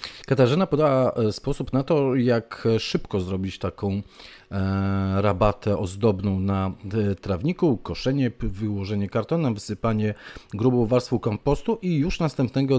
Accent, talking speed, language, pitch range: native, 110 wpm, Polish, 100-125 Hz